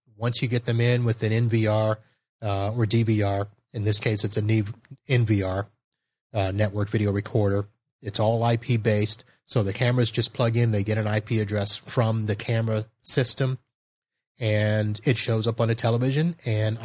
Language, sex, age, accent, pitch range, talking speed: English, male, 30-49, American, 110-125 Hz, 165 wpm